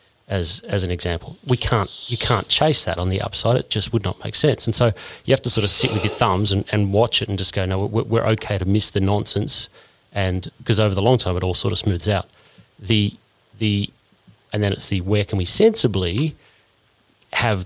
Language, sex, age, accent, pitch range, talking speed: English, male, 30-49, Australian, 95-115 Hz, 230 wpm